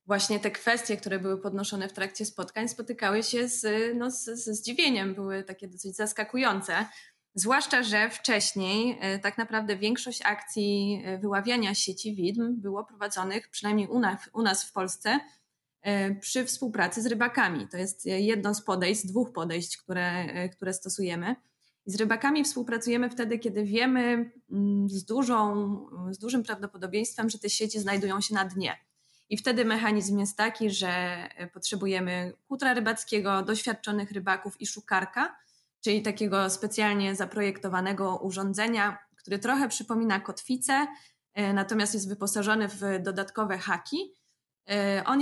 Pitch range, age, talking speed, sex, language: 195-230 Hz, 20-39, 130 wpm, female, Polish